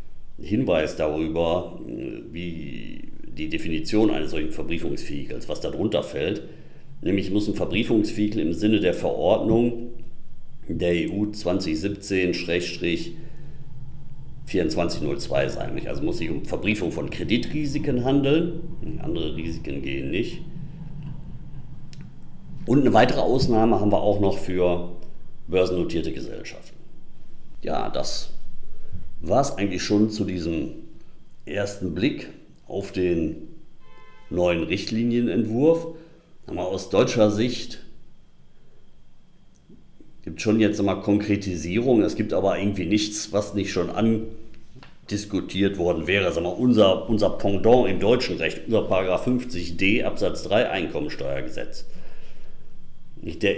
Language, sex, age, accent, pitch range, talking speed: German, male, 50-69, German, 90-125 Hz, 105 wpm